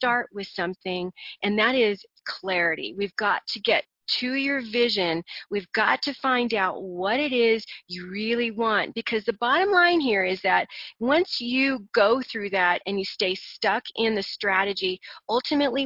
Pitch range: 190-245 Hz